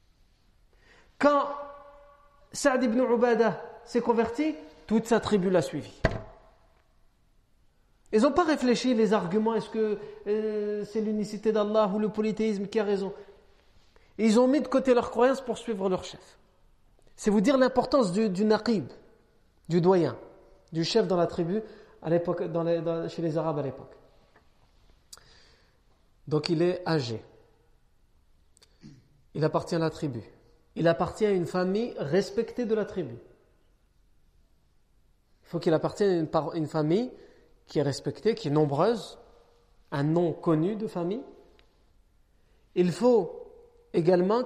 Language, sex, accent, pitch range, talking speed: French, male, French, 155-220 Hz, 140 wpm